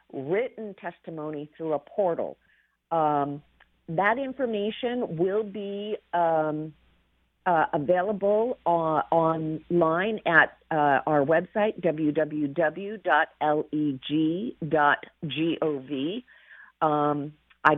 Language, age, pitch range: English, 50-69, 145-180 Hz